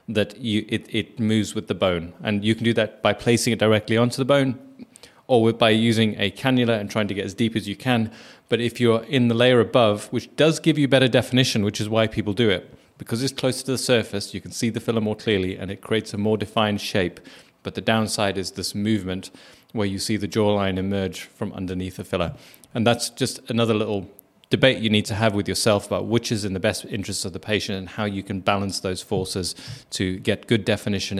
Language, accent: English, British